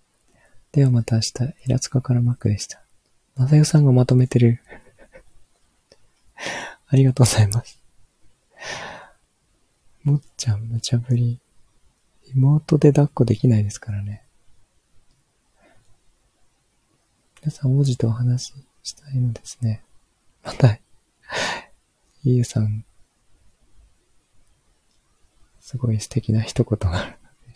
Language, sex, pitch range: Japanese, male, 105-130 Hz